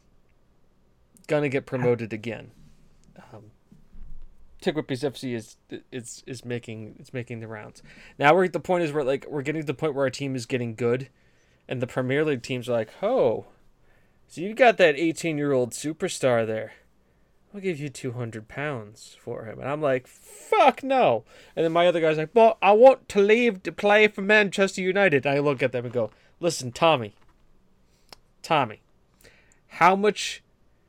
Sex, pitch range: male, 120-175 Hz